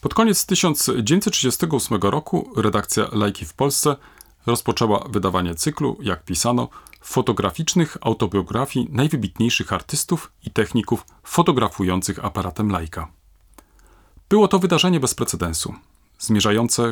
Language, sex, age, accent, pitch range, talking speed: Polish, male, 40-59, native, 100-145 Hz, 100 wpm